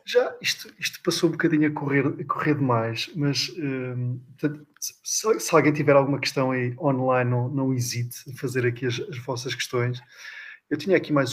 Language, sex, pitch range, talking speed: English, male, 120-150 Hz, 180 wpm